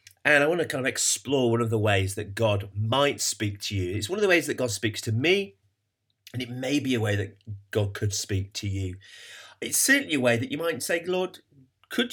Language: English